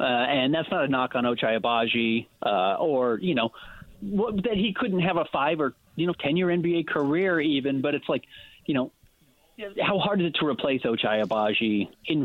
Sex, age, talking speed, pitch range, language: male, 30-49, 195 wpm, 115-165 Hz, English